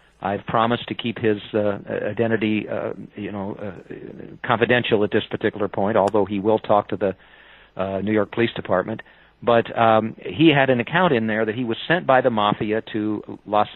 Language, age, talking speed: English, 50-69, 190 wpm